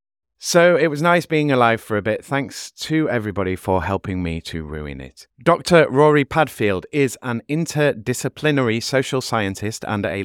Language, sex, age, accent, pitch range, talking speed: English, male, 30-49, British, 90-130 Hz, 165 wpm